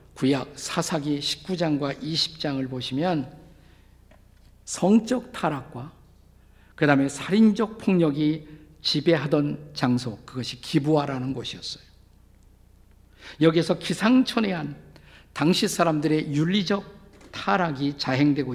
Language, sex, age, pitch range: Korean, male, 50-69, 120-170 Hz